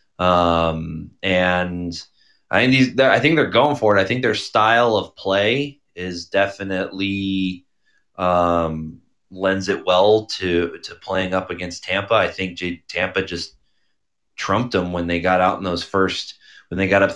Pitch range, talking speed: 90-110 Hz, 160 wpm